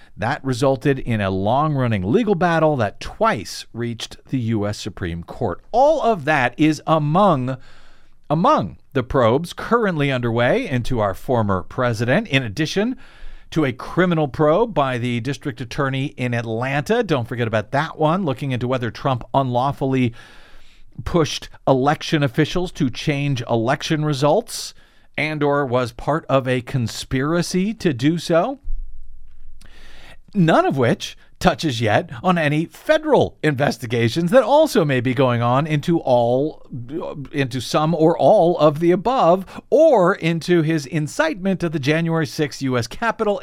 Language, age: English, 50-69